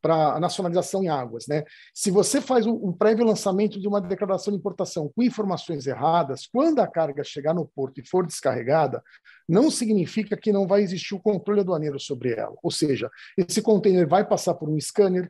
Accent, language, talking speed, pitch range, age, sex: Brazilian, Portuguese, 195 wpm, 155-210 Hz, 50-69, male